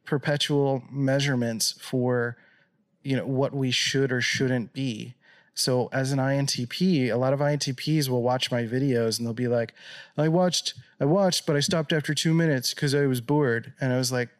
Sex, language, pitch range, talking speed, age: male, English, 125-145 Hz, 190 wpm, 30-49